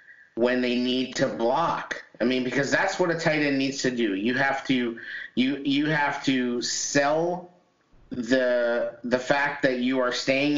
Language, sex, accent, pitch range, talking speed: English, male, American, 120-140 Hz, 175 wpm